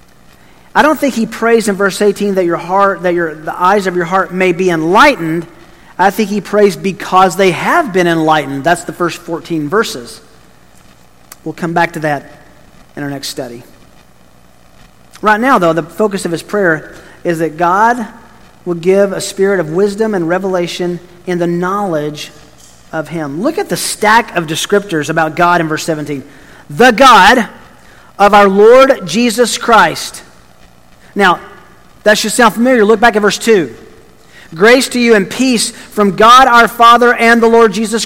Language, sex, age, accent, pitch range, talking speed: English, male, 40-59, American, 165-225 Hz, 170 wpm